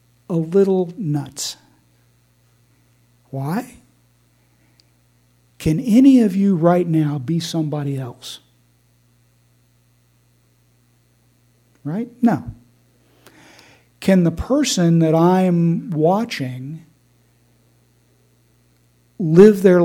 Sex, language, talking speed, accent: male, English, 70 wpm, American